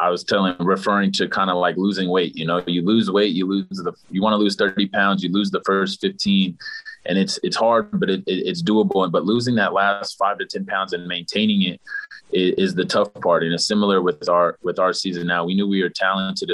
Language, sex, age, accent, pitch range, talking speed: English, male, 30-49, American, 90-110 Hz, 250 wpm